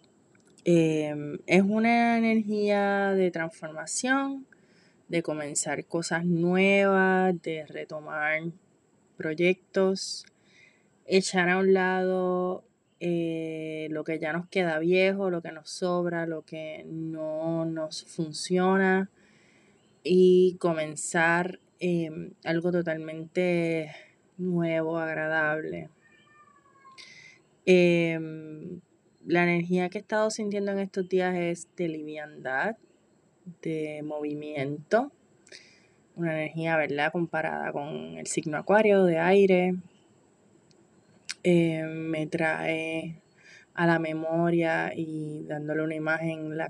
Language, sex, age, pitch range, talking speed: Spanish, female, 20-39, 155-185 Hz, 100 wpm